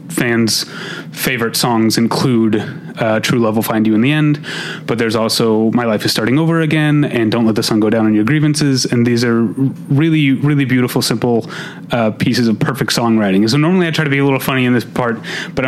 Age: 30-49